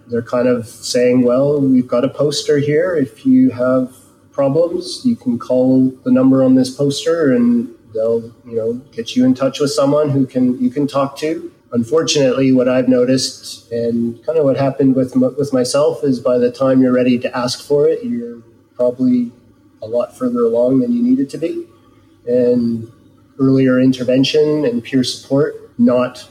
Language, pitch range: English, 125-145 Hz